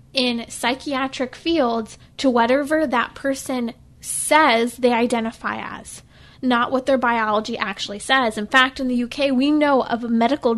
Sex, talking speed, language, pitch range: female, 145 wpm, English, 230-280 Hz